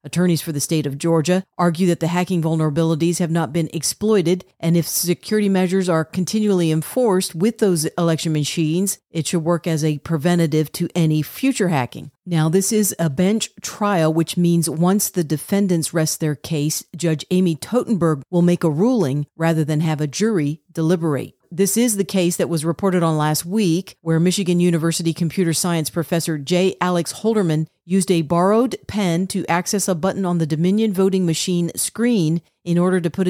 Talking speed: 180 wpm